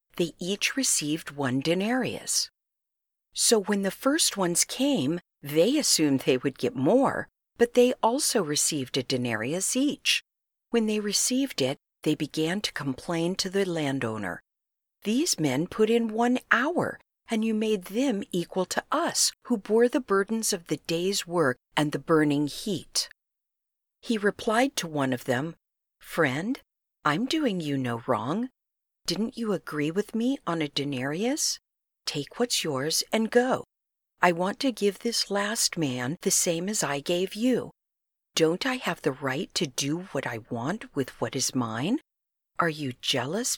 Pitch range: 145-225 Hz